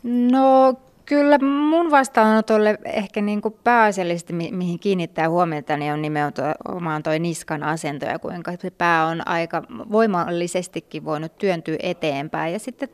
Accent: native